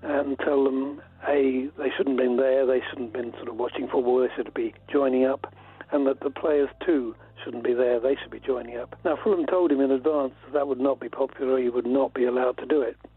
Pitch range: 125-145 Hz